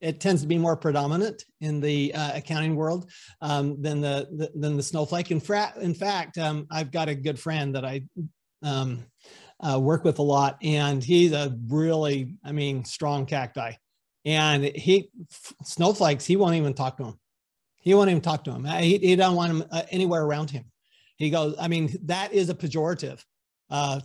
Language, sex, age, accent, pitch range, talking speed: English, male, 40-59, American, 145-175 Hz, 190 wpm